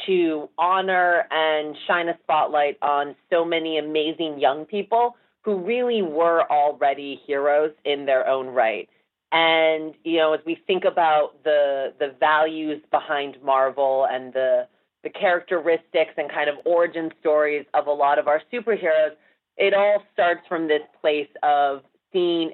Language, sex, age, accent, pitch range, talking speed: English, female, 30-49, American, 145-170 Hz, 150 wpm